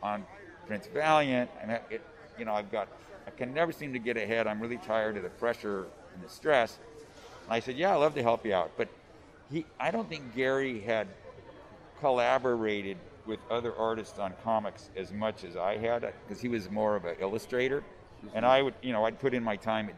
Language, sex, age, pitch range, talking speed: English, male, 50-69, 105-135 Hz, 215 wpm